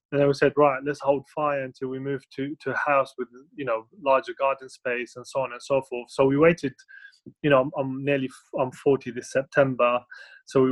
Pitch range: 130-150 Hz